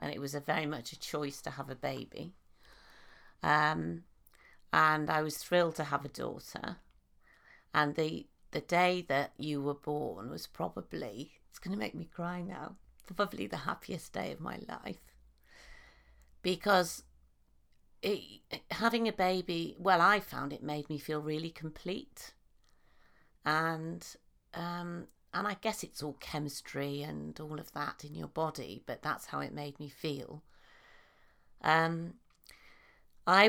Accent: British